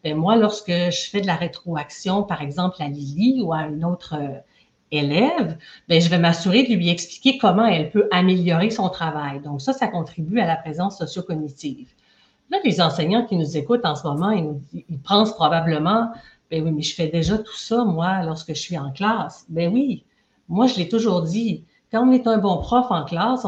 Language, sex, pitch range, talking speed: French, female, 165-220 Hz, 205 wpm